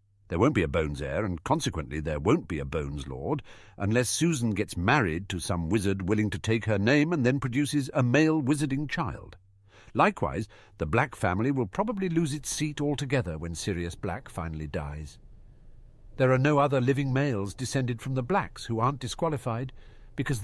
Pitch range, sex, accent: 105-165 Hz, male, British